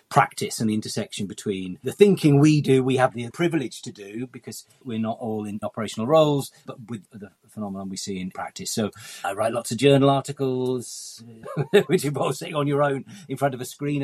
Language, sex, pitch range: English, male, 105-135 Hz